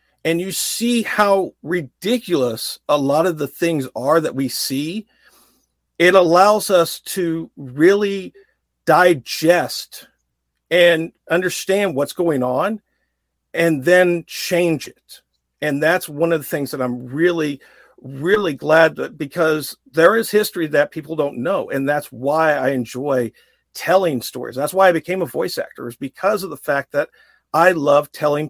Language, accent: English, American